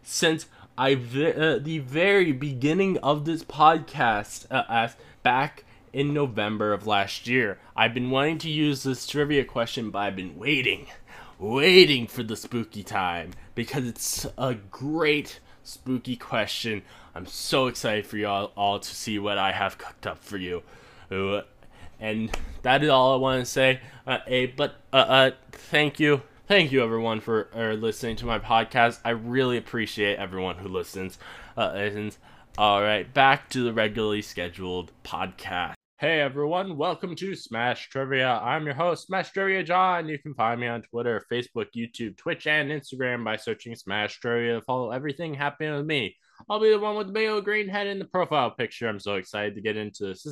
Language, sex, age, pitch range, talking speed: English, male, 10-29, 105-150 Hz, 175 wpm